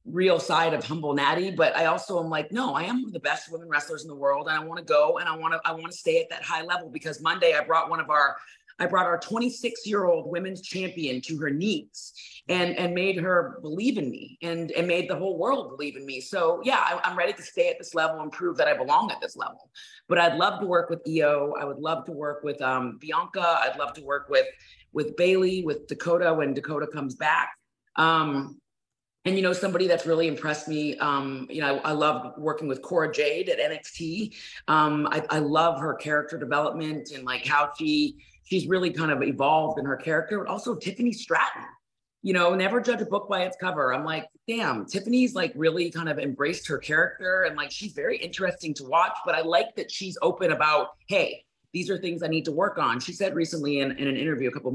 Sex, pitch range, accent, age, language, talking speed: female, 150-185 Hz, American, 30-49, English, 235 wpm